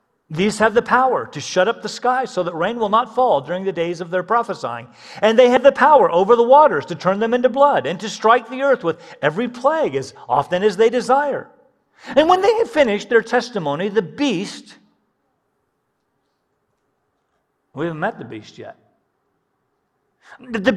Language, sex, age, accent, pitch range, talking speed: English, male, 50-69, American, 180-255 Hz, 180 wpm